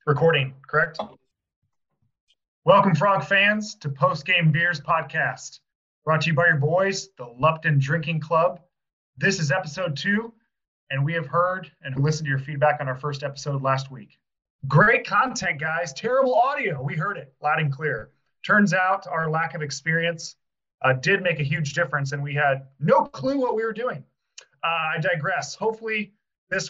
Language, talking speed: English, 170 wpm